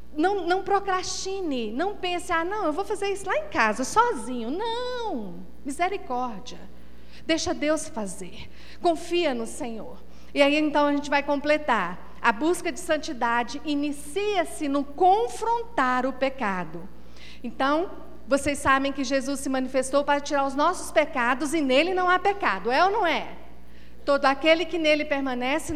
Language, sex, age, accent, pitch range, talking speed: Portuguese, female, 40-59, Brazilian, 240-325 Hz, 150 wpm